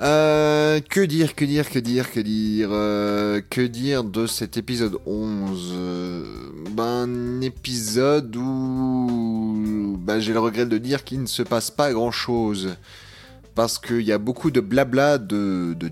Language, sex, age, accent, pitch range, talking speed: French, male, 20-39, French, 95-120 Hz, 160 wpm